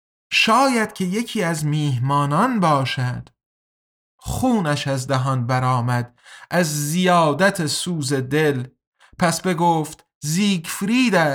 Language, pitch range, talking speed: Persian, 140-180 Hz, 90 wpm